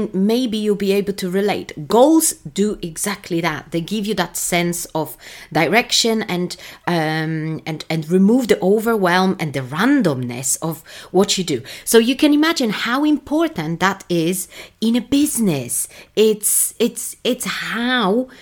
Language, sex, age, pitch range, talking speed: English, female, 30-49, 160-225 Hz, 150 wpm